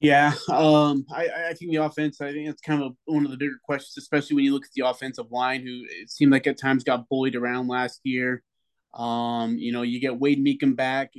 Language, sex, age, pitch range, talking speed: English, male, 20-39, 125-145 Hz, 240 wpm